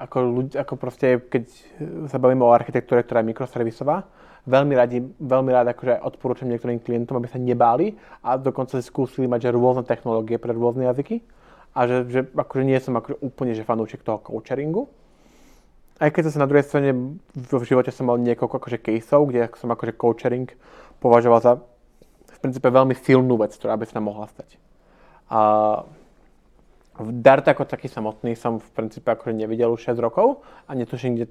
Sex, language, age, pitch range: male, English, 20-39, 115-135 Hz